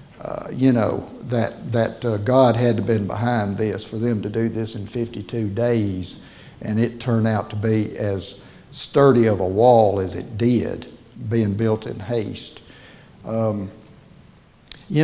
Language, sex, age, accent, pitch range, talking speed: English, male, 60-79, American, 110-125 Hz, 160 wpm